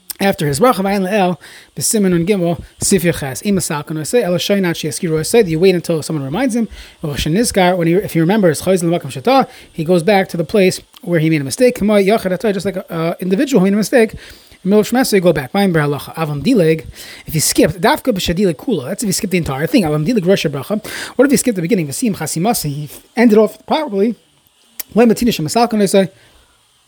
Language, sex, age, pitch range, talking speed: English, male, 20-39, 155-205 Hz, 190 wpm